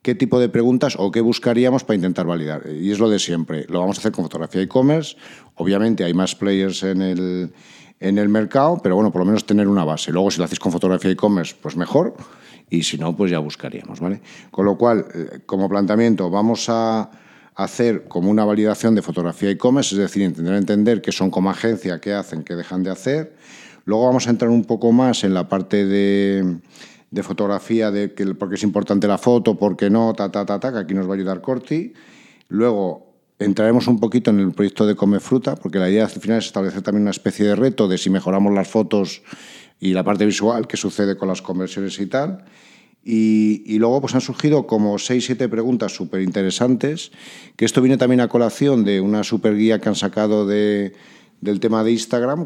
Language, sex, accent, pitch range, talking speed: Spanish, male, Spanish, 95-115 Hz, 210 wpm